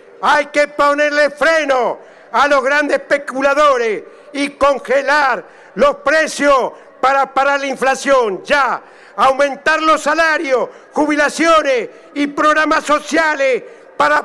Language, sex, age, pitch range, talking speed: Spanish, male, 50-69, 275-315 Hz, 105 wpm